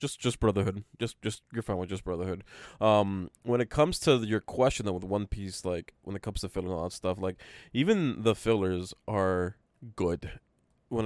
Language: English